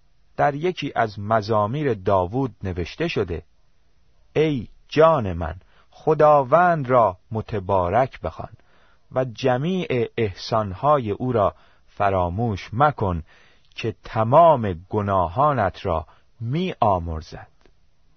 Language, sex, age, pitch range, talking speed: Persian, male, 40-59, 90-130 Hz, 90 wpm